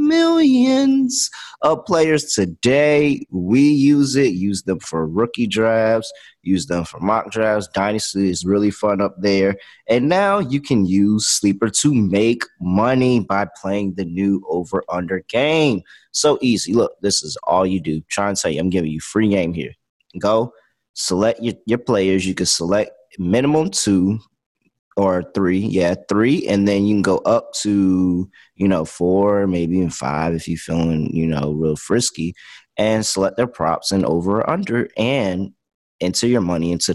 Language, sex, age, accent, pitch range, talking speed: English, male, 30-49, American, 90-130 Hz, 165 wpm